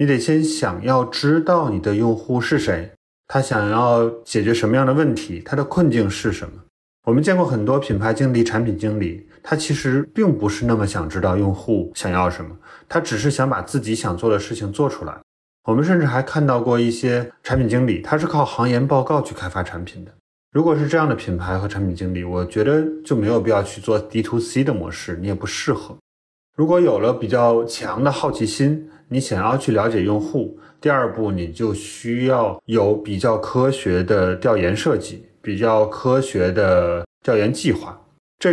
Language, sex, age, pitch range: Chinese, male, 20-39, 100-130 Hz